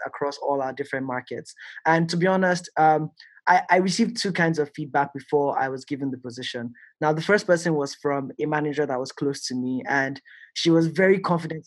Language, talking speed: English, 210 wpm